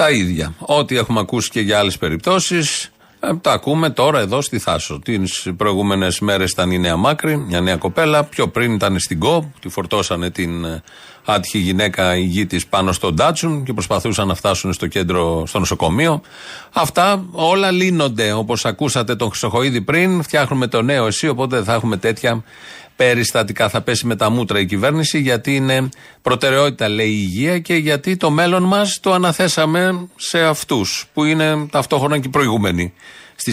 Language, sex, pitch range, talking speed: Greek, male, 105-145 Hz, 170 wpm